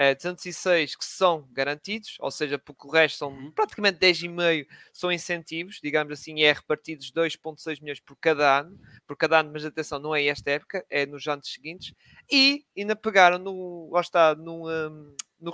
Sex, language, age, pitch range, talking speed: male, Portuguese, 20-39, 155-190 Hz, 160 wpm